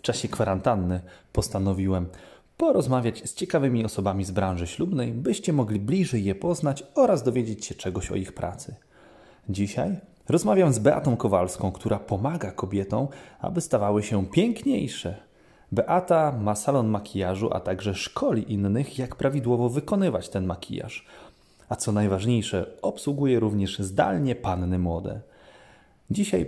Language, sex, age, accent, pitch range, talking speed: Polish, male, 30-49, native, 95-135 Hz, 130 wpm